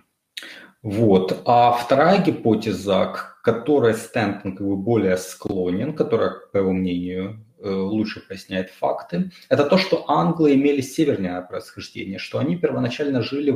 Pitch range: 105-145 Hz